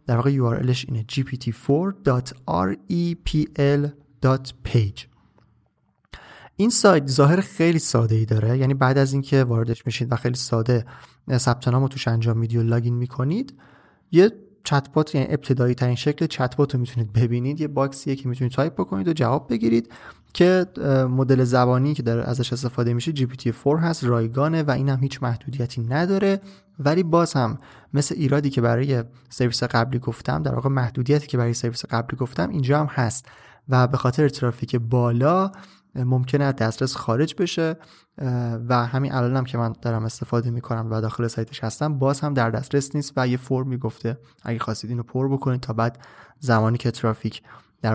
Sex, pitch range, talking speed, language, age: male, 120-145 Hz, 165 wpm, Persian, 30-49